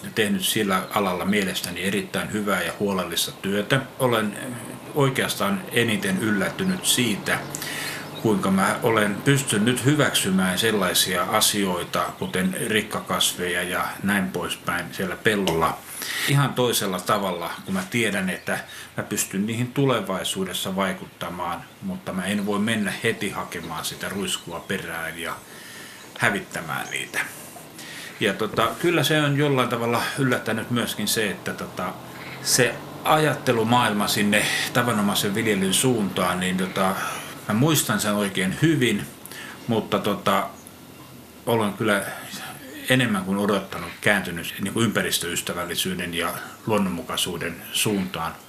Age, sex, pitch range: 60-79, male, 100-140 Hz